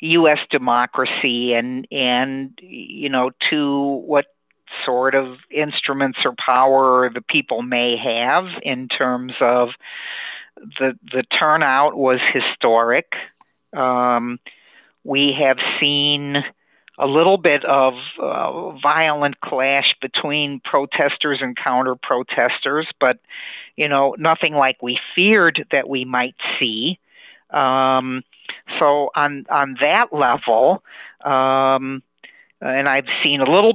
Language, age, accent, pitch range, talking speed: English, 50-69, American, 130-150 Hz, 115 wpm